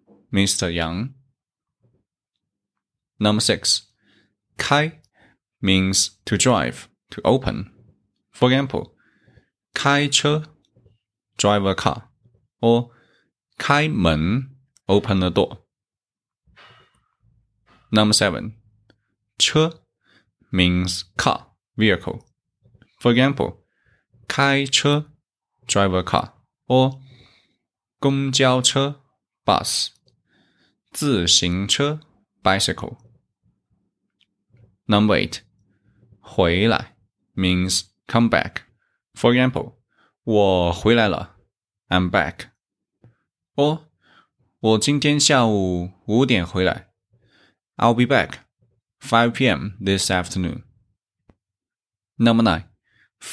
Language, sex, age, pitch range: Chinese, male, 20-39, 100-130 Hz